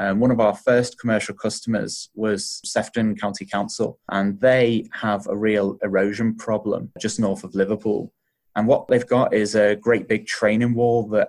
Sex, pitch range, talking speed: male, 100-120 Hz, 175 wpm